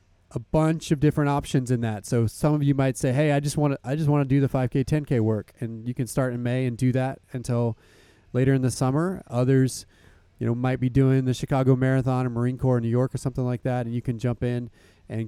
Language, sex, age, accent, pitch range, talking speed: English, male, 30-49, American, 115-135 Hz, 260 wpm